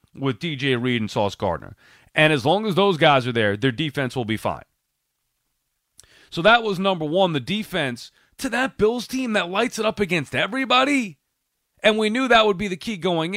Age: 30-49